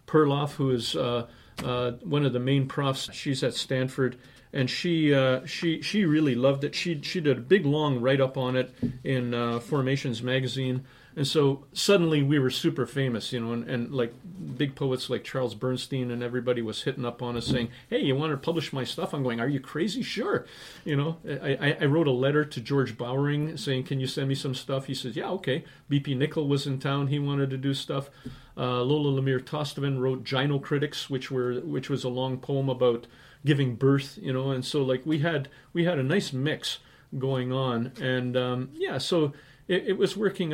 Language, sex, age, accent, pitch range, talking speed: English, male, 40-59, American, 125-145 Hz, 210 wpm